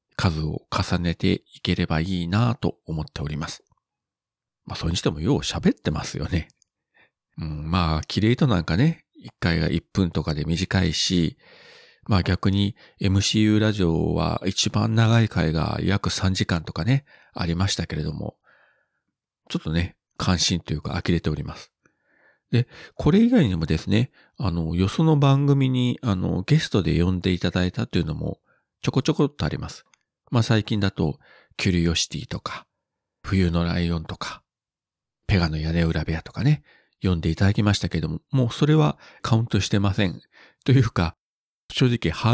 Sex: male